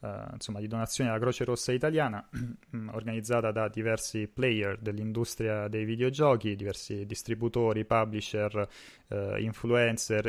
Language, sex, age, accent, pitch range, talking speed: Italian, male, 30-49, native, 105-115 Hz, 115 wpm